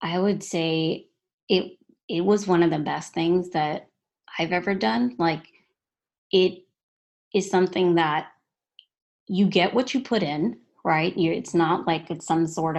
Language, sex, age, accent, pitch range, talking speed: English, female, 20-39, American, 160-190 Hz, 155 wpm